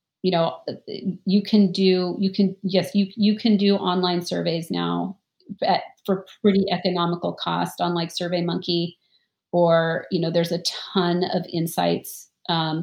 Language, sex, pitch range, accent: English, female, 170-190 Hz, American